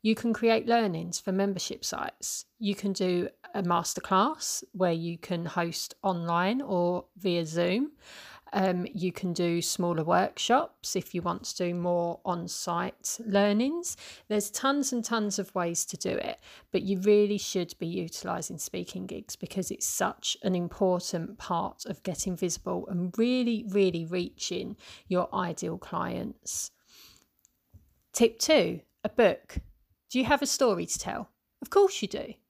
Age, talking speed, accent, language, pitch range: 40-59, 150 wpm, British, English, 180-230 Hz